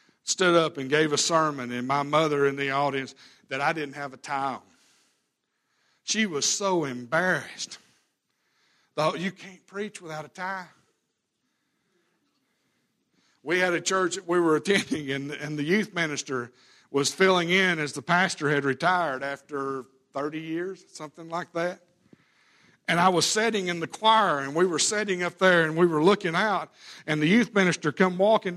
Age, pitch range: 60-79, 145-185 Hz